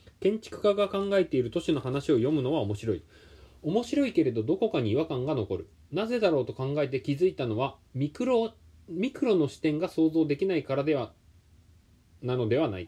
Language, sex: Japanese, male